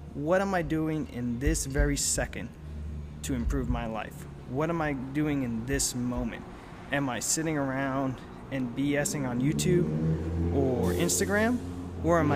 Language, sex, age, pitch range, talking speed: English, male, 20-39, 115-145 Hz, 150 wpm